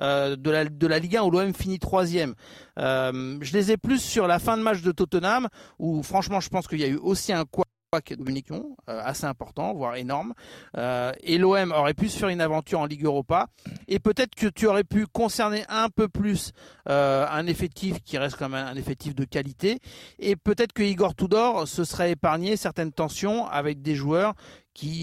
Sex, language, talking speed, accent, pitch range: male, French, 200 wpm, French, 140-190 Hz